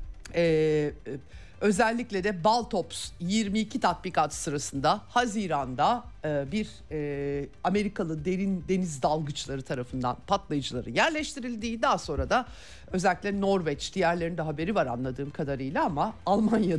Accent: native